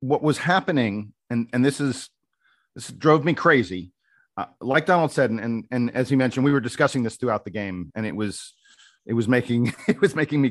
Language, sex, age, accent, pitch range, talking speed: English, male, 40-59, American, 115-140 Hz, 215 wpm